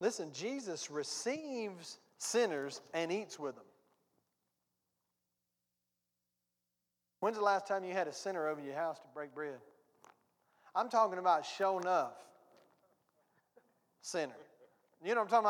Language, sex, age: English, male, 40-59